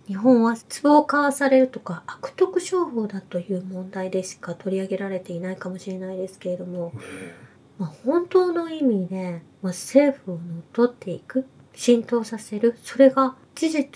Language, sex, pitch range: Japanese, female, 185-280 Hz